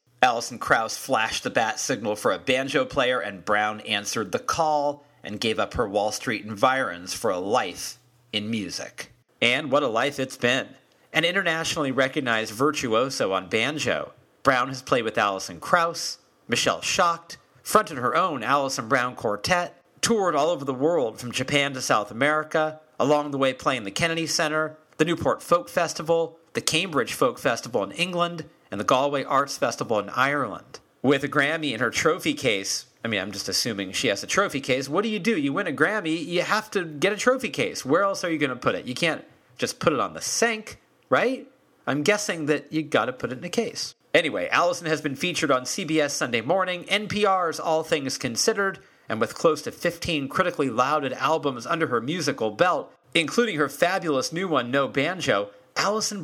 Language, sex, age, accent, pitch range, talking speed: English, male, 40-59, American, 130-175 Hz, 190 wpm